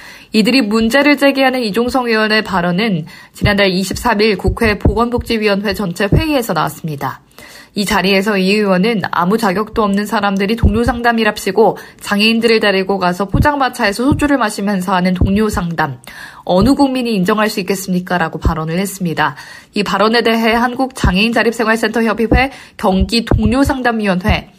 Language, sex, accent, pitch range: Korean, female, native, 190-235 Hz